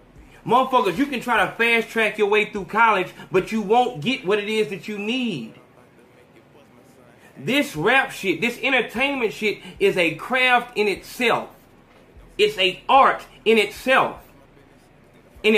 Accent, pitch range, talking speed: American, 185-255 Hz, 145 wpm